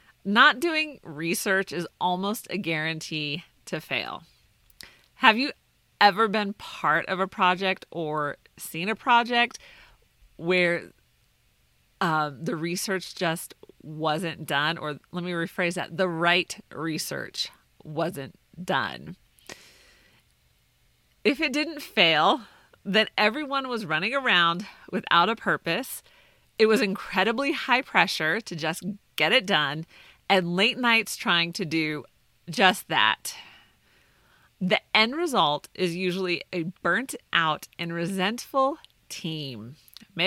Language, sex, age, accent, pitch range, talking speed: English, female, 40-59, American, 165-225 Hz, 120 wpm